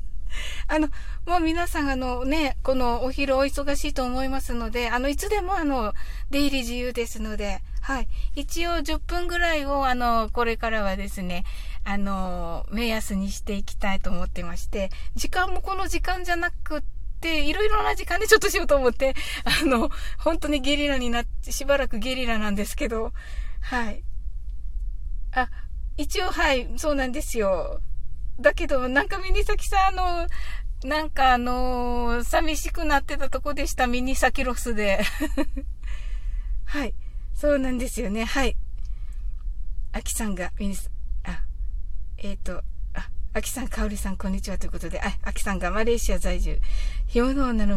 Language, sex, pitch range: Japanese, female, 195-295 Hz